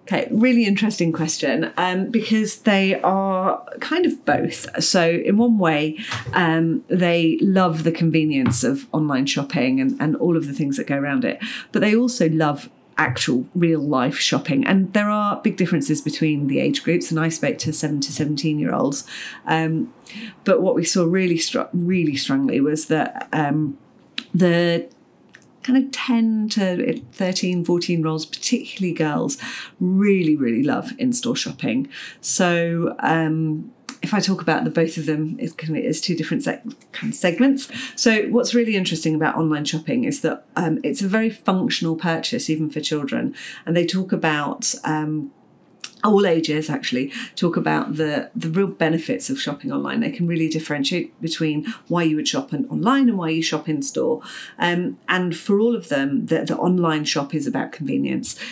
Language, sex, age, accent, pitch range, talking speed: English, female, 40-59, British, 155-225 Hz, 170 wpm